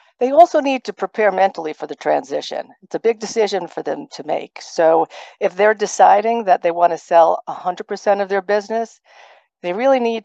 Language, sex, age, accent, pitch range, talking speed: English, female, 50-69, American, 165-210 Hz, 195 wpm